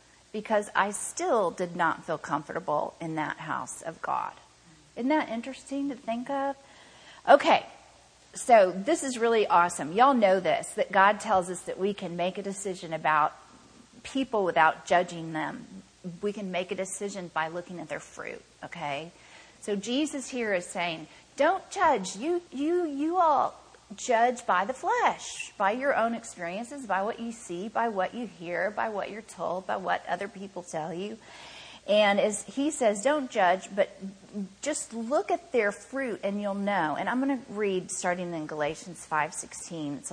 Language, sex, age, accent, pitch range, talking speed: English, female, 40-59, American, 175-240 Hz, 170 wpm